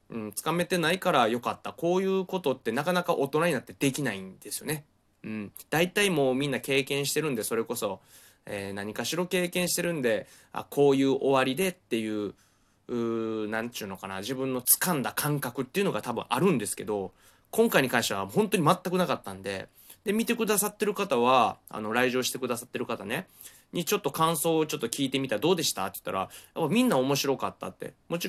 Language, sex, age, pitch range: Japanese, male, 20-39, 110-170 Hz